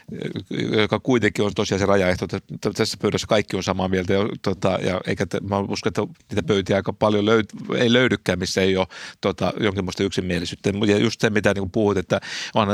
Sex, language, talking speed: male, Finnish, 185 wpm